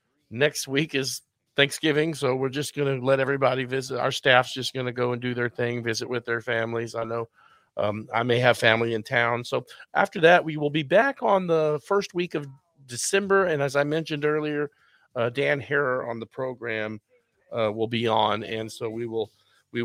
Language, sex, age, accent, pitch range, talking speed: English, male, 40-59, American, 125-165 Hz, 200 wpm